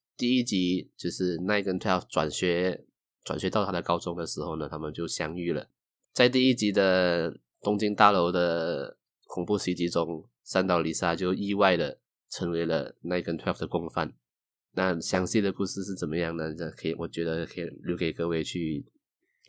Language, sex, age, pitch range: Chinese, male, 20-39, 85-105 Hz